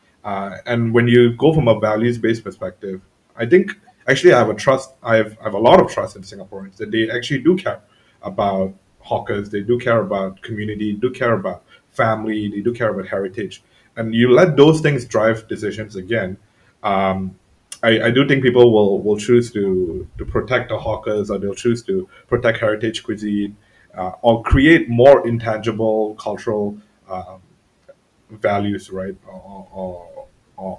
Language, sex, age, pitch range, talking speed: English, male, 30-49, 100-120 Hz, 170 wpm